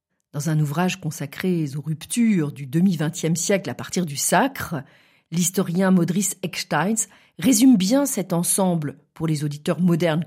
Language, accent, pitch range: French, French, 150-190 Hz